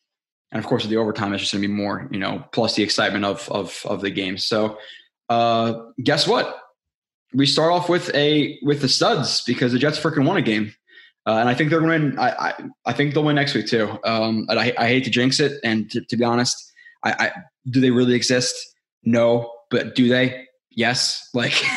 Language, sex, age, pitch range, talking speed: English, male, 20-39, 115-145 Hz, 220 wpm